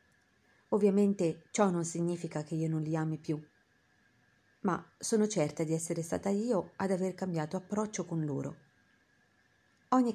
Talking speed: 140 wpm